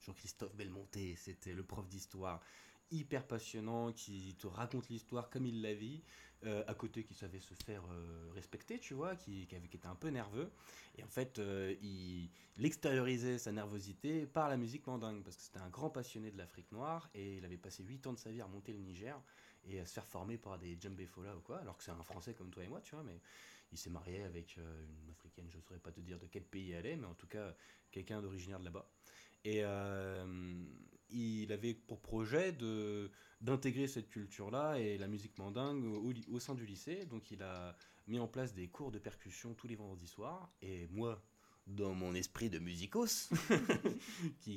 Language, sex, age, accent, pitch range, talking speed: French, male, 20-39, French, 95-115 Hz, 215 wpm